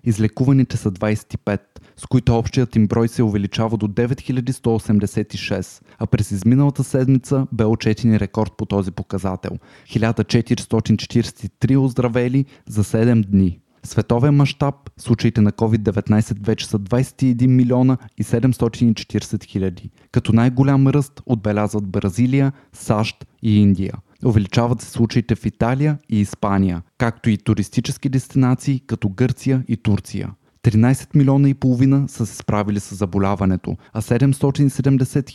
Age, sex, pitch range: 20-39, male, 110-130 Hz